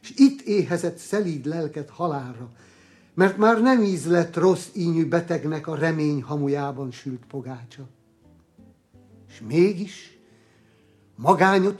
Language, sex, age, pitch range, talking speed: Hungarian, male, 60-79, 130-180 Hz, 110 wpm